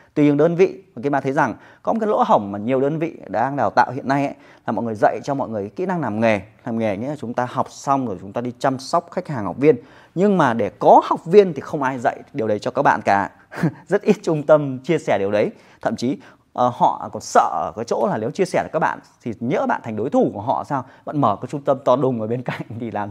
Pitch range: 120-165 Hz